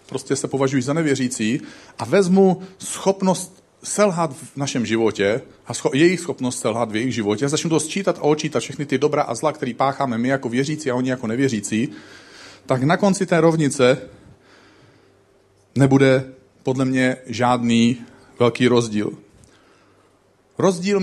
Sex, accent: male, native